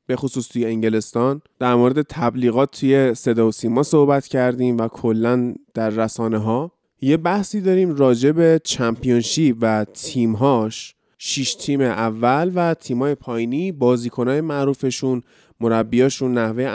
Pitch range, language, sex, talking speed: 120-140 Hz, Persian, male, 130 wpm